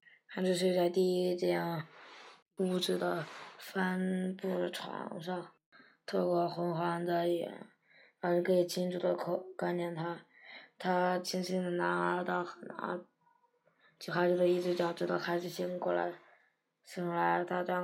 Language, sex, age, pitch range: Chinese, female, 20-39, 170-185 Hz